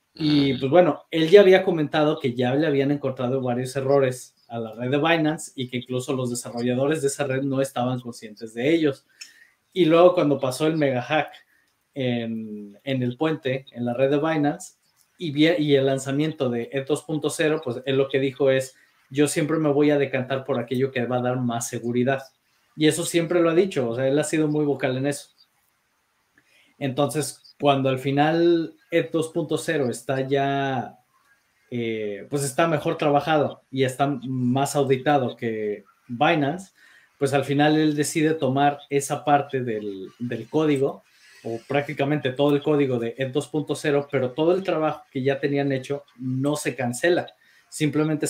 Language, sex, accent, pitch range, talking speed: Spanish, male, Mexican, 130-150 Hz, 175 wpm